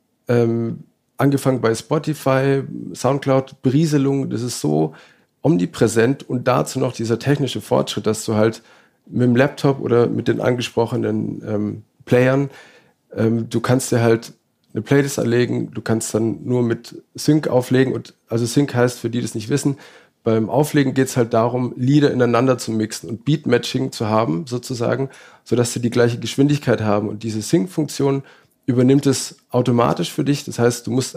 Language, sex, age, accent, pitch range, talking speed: German, male, 40-59, German, 115-135 Hz, 165 wpm